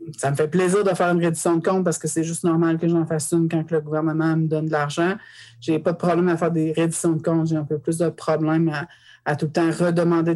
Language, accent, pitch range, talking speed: French, Canadian, 160-180 Hz, 285 wpm